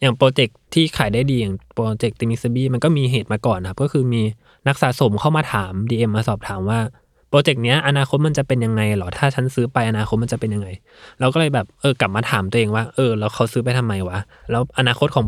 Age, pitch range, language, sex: 20-39, 110-140 Hz, Thai, male